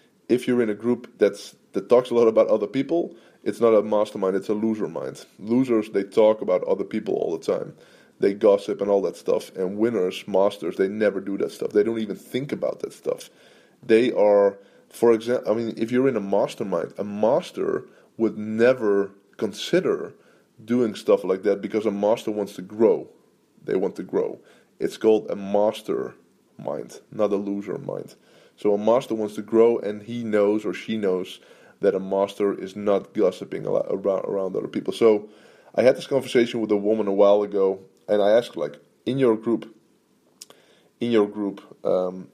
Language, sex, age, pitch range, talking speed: English, male, 20-39, 105-135 Hz, 190 wpm